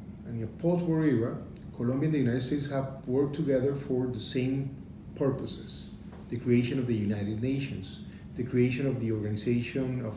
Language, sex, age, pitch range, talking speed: English, male, 40-59, 120-155 Hz, 170 wpm